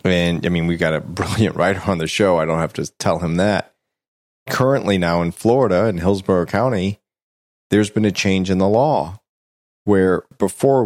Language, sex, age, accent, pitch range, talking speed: English, male, 30-49, American, 85-110 Hz, 190 wpm